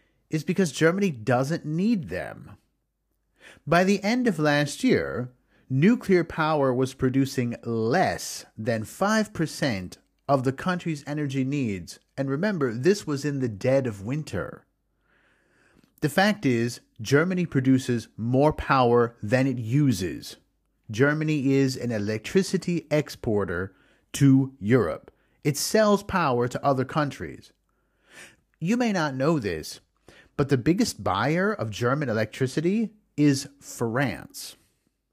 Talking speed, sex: 120 wpm, male